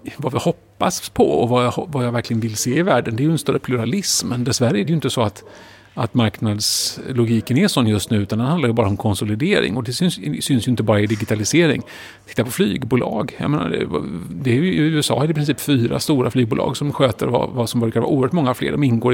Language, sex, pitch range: Swedish, male, 115-150 Hz